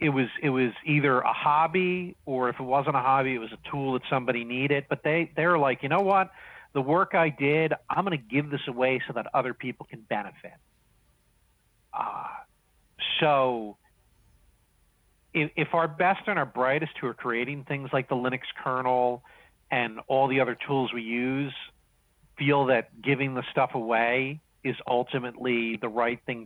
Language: English